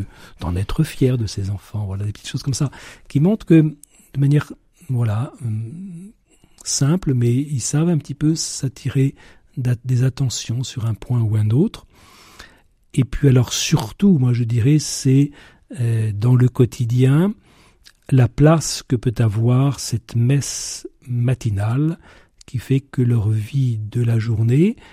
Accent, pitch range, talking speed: French, 110-140 Hz, 140 wpm